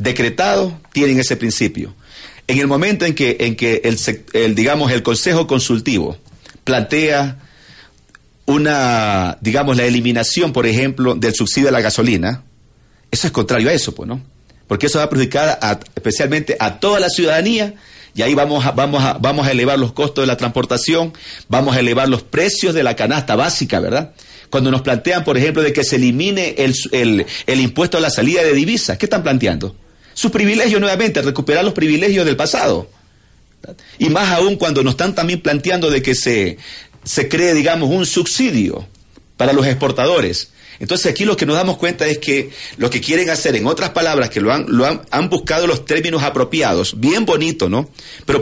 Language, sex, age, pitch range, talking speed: Spanish, male, 40-59, 125-160 Hz, 185 wpm